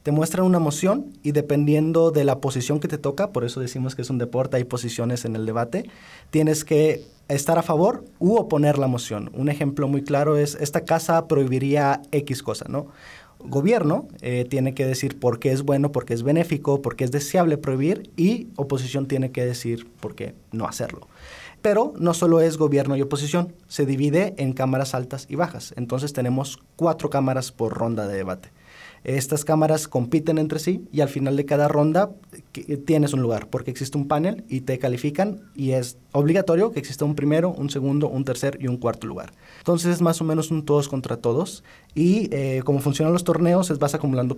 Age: 20-39